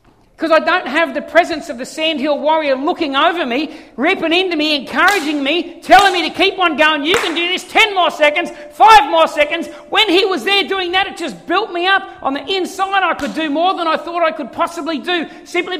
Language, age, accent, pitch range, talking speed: English, 50-69, Australian, 310-370 Hz, 230 wpm